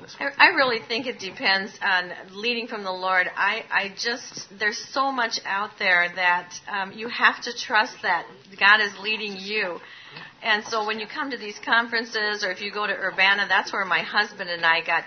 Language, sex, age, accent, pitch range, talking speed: English, female, 40-59, American, 185-235 Hz, 200 wpm